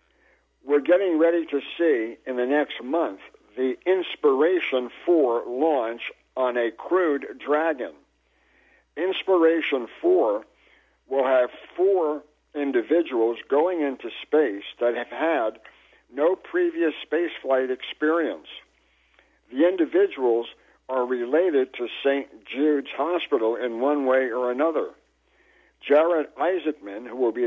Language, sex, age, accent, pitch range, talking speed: English, male, 60-79, American, 120-160 Hz, 110 wpm